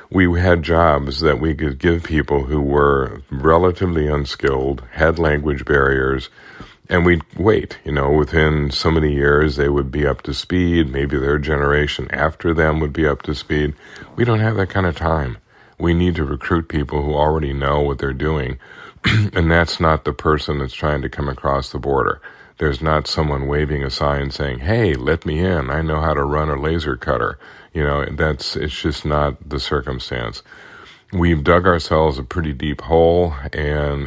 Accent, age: American, 50-69